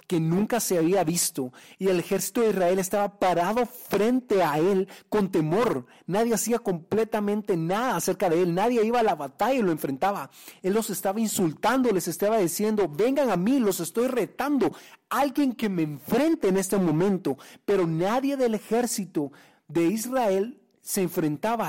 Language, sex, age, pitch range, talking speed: English, male, 40-59, 170-225 Hz, 165 wpm